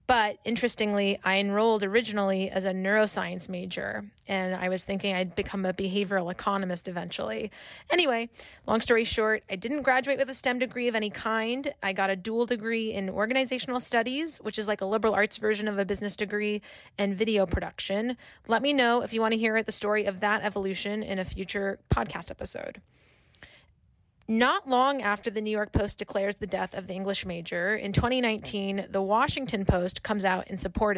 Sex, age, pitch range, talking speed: female, 20-39, 195-230 Hz, 185 wpm